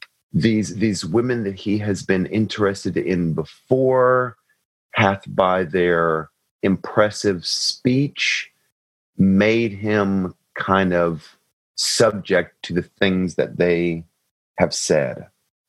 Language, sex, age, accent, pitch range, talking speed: English, male, 40-59, American, 85-95 Hz, 105 wpm